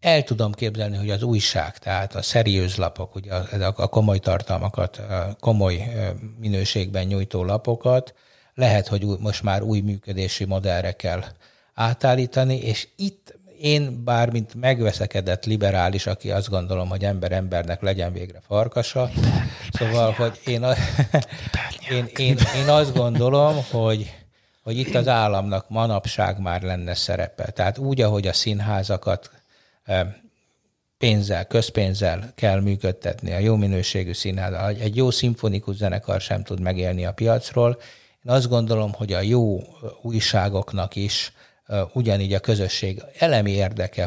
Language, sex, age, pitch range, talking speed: Hungarian, male, 60-79, 95-115 Hz, 135 wpm